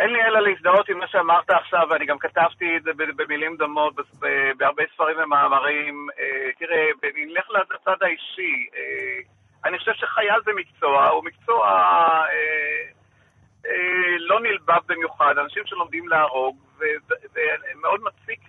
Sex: male